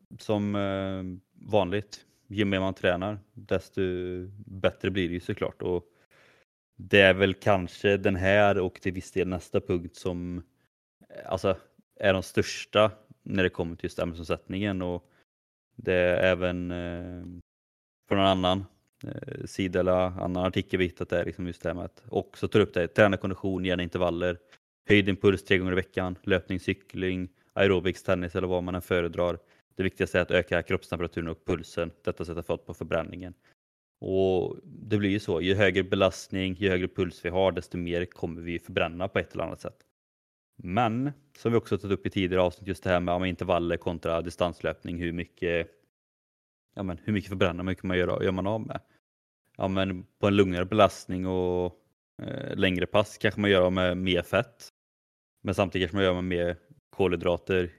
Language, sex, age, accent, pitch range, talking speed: Swedish, male, 20-39, native, 90-100 Hz, 180 wpm